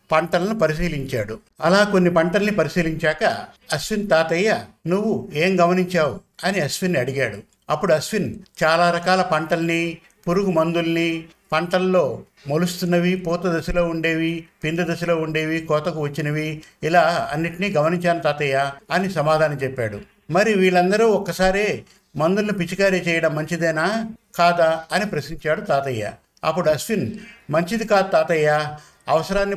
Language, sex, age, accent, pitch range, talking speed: Telugu, male, 50-69, native, 155-185 Hz, 110 wpm